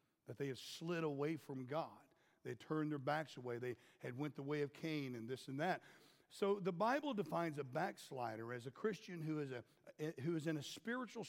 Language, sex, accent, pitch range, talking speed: English, male, American, 140-190 Hz, 220 wpm